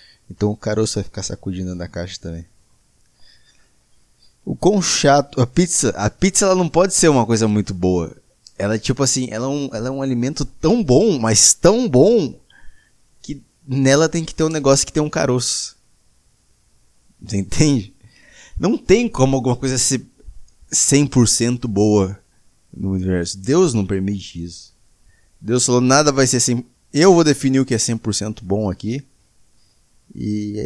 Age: 20-39